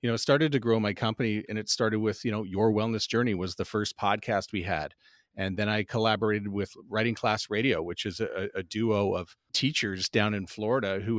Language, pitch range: English, 105-125 Hz